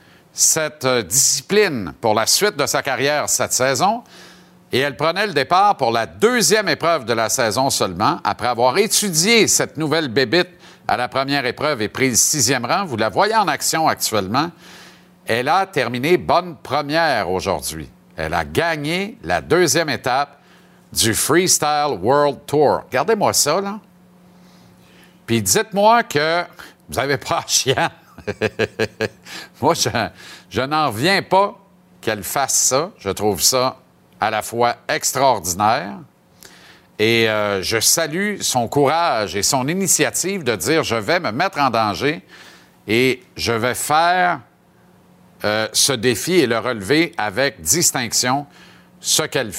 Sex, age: male, 50-69